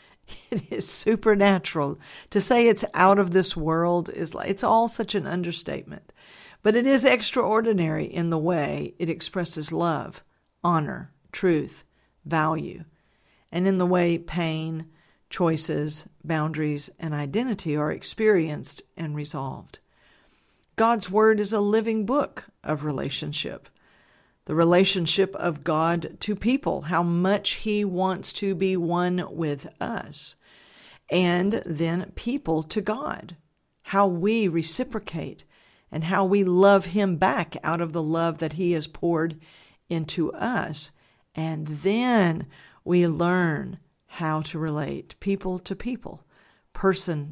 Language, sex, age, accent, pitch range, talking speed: English, female, 50-69, American, 160-200 Hz, 125 wpm